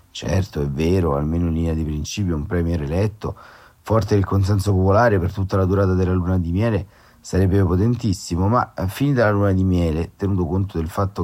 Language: Italian